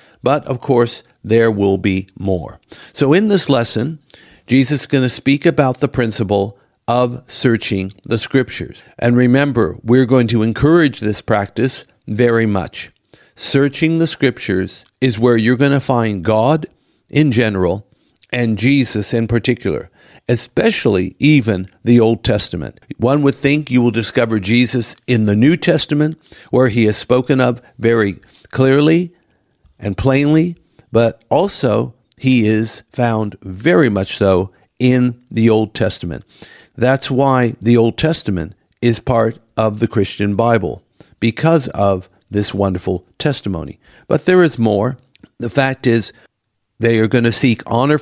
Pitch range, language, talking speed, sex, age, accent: 105-135 Hz, English, 145 wpm, male, 50-69, American